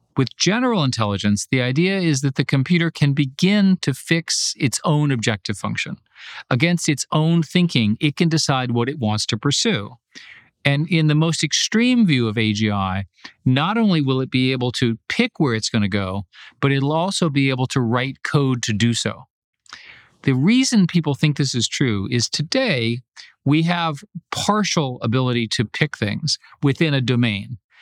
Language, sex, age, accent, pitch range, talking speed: English, male, 50-69, American, 120-165 Hz, 170 wpm